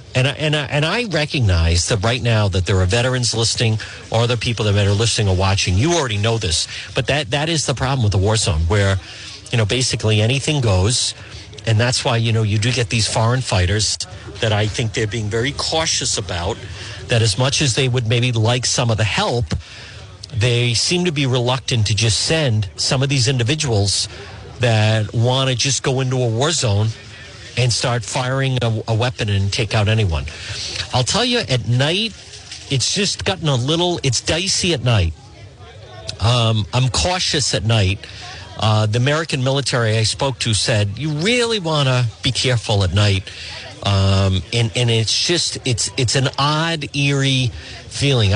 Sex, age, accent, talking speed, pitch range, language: male, 50-69, American, 185 wpm, 105-135 Hz, English